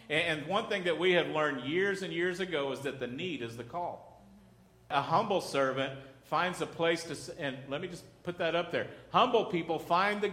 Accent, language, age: American, English, 50-69